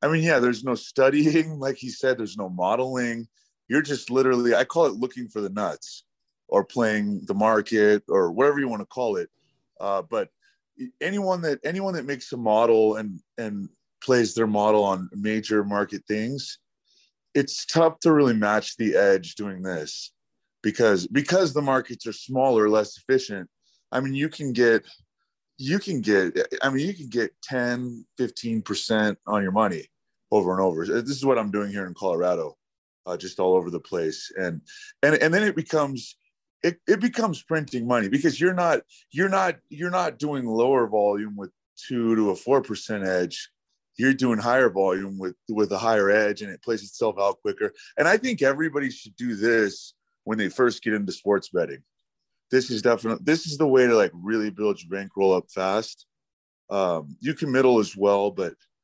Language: English